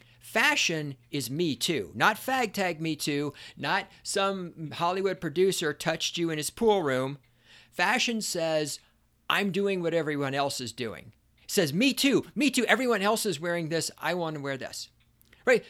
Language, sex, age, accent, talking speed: English, male, 50-69, American, 170 wpm